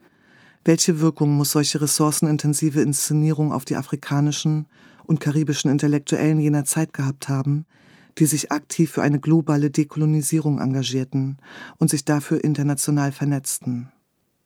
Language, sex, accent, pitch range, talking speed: German, female, German, 145-160 Hz, 120 wpm